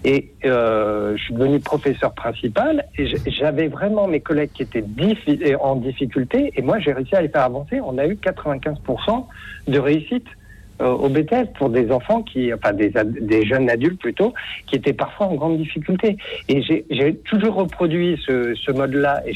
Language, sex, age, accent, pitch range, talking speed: French, male, 60-79, French, 135-175 Hz, 180 wpm